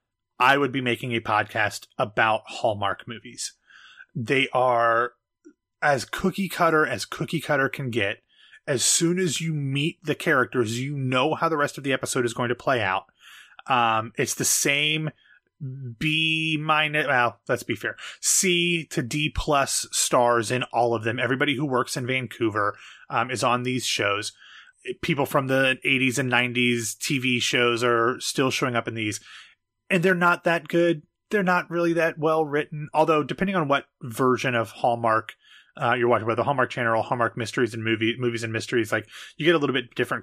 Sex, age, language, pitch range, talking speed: male, 30-49, English, 120-155 Hz, 180 wpm